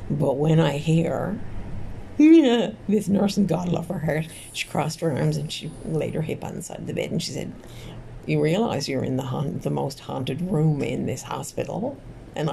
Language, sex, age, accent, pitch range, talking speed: English, female, 50-69, American, 115-155 Hz, 205 wpm